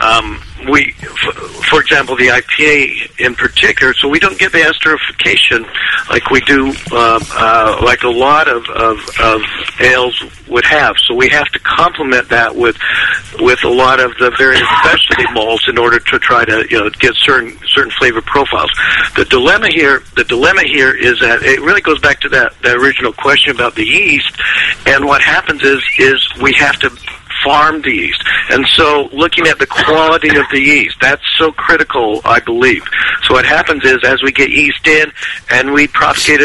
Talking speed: 185 wpm